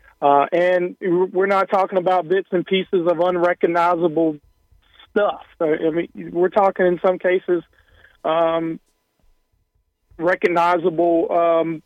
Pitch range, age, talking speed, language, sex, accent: 165-185 Hz, 40-59, 105 wpm, English, male, American